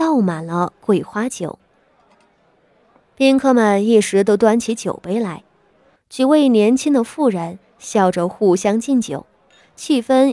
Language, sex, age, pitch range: Chinese, female, 20-39, 180-250 Hz